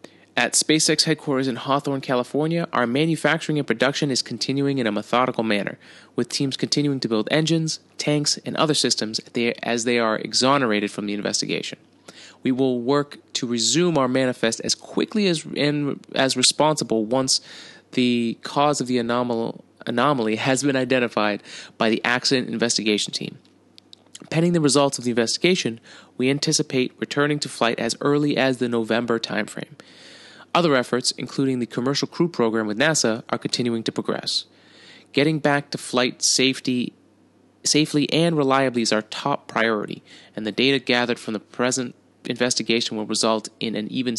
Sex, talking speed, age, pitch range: male, 160 wpm, 20-39, 115-145 Hz